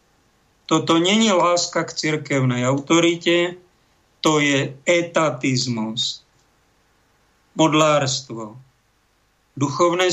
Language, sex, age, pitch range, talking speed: Slovak, male, 50-69, 145-185 Hz, 65 wpm